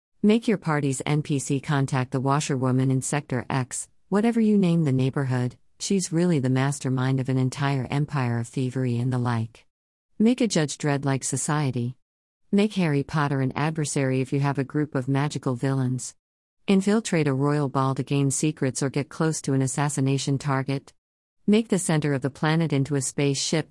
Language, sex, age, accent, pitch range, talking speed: English, female, 50-69, American, 130-155 Hz, 175 wpm